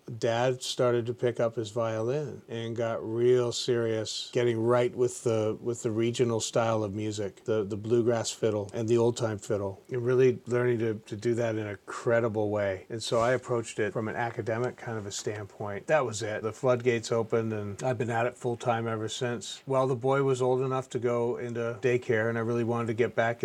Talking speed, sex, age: 210 wpm, male, 40-59